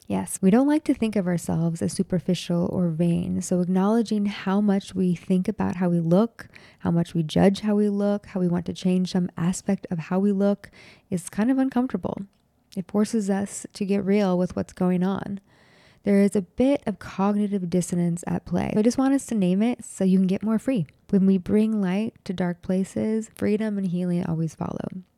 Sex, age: female, 20-39